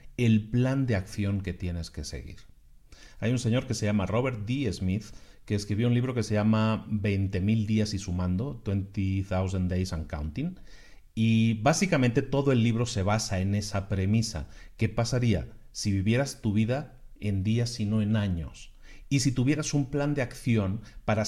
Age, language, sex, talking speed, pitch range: 40-59, Spanish, male, 175 wpm, 95-120 Hz